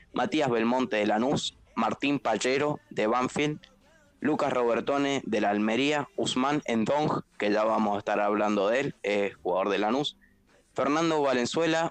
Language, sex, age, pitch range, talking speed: Spanish, male, 20-39, 110-140 Hz, 150 wpm